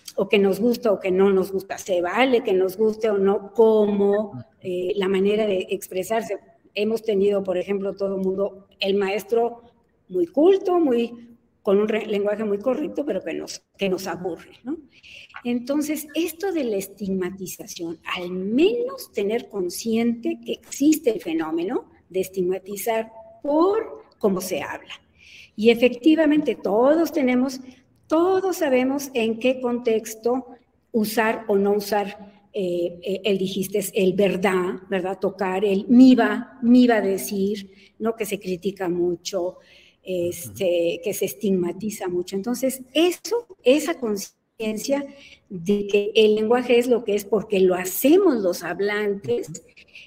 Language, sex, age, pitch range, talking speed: Spanish, female, 50-69, 195-255 Hz, 145 wpm